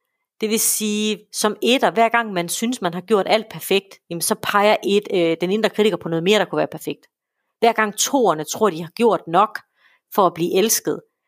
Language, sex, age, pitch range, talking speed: Danish, female, 40-59, 185-230 Hz, 220 wpm